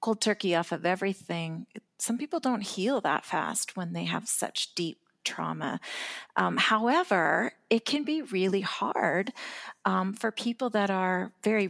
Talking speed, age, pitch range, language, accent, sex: 155 wpm, 40-59, 175-215 Hz, English, American, female